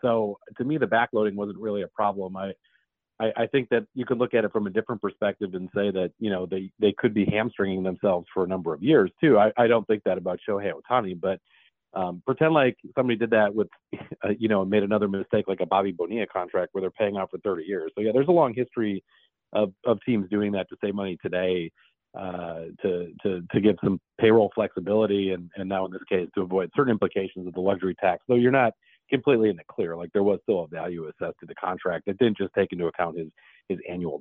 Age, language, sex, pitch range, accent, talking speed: 40-59, English, male, 95-110 Hz, American, 240 wpm